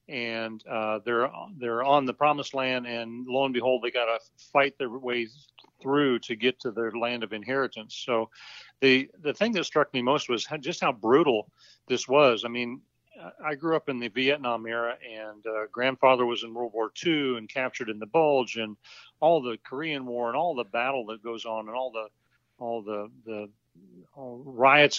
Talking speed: 190 wpm